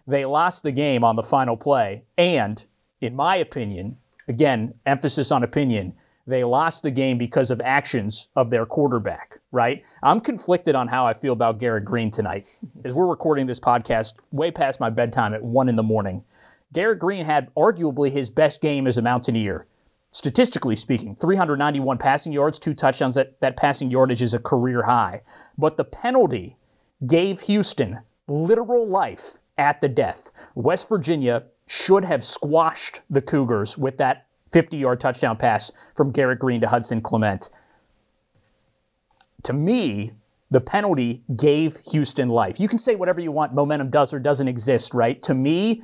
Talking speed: 165 wpm